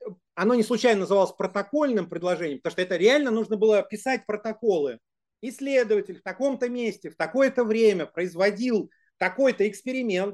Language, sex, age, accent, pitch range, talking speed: Russian, male, 30-49, native, 170-240 Hz, 140 wpm